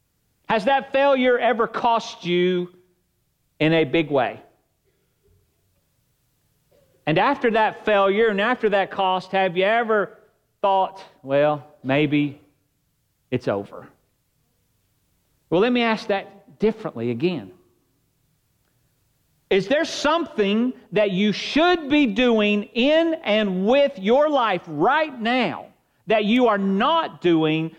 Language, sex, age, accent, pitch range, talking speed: English, male, 40-59, American, 125-210 Hz, 115 wpm